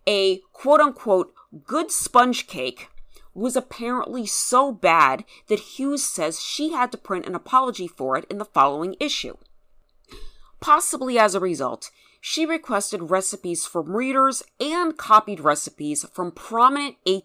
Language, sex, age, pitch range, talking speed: English, female, 30-49, 165-260 Hz, 130 wpm